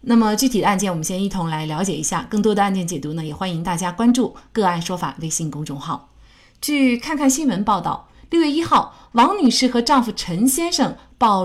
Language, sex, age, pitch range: Chinese, female, 30-49, 180-260 Hz